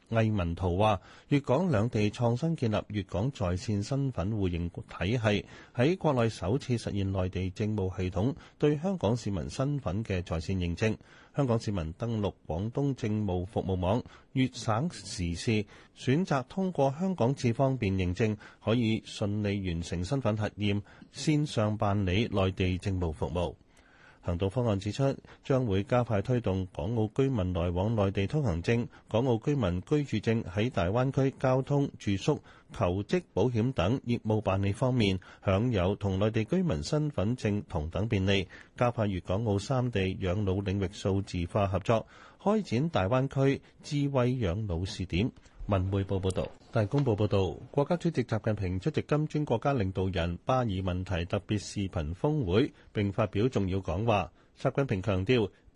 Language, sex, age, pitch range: Chinese, male, 30-49, 95-130 Hz